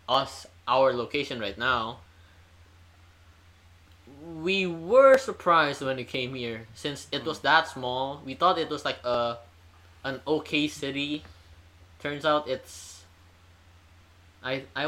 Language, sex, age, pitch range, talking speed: English, male, 20-39, 90-150 Hz, 125 wpm